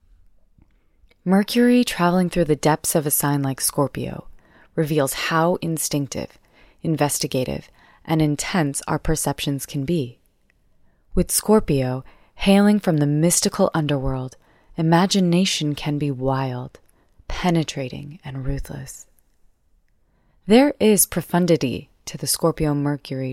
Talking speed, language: 105 wpm, English